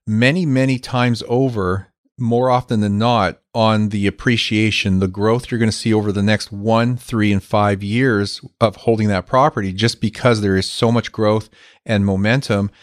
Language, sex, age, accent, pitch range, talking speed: English, male, 40-59, American, 100-120 Hz, 180 wpm